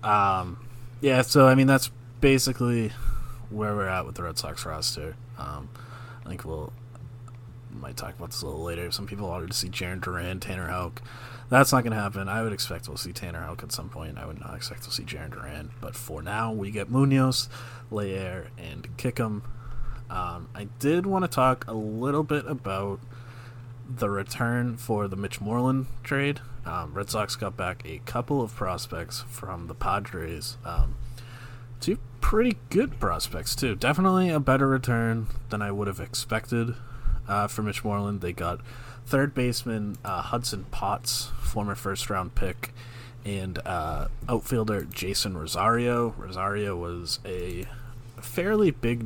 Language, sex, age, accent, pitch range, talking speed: English, male, 30-49, American, 100-125 Hz, 165 wpm